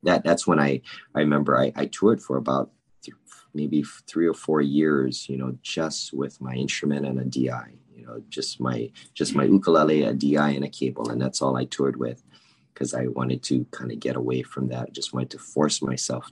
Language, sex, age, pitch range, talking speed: English, male, 30-49, 65-90 Hz, 215 wpm